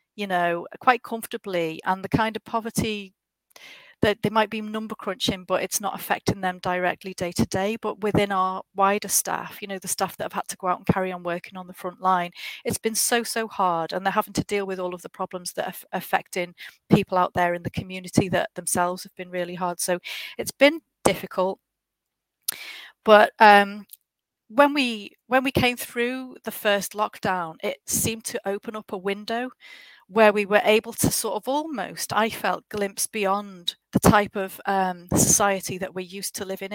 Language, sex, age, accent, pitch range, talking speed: English, female, 30-49, British, 185-220 Hz, 195 wpm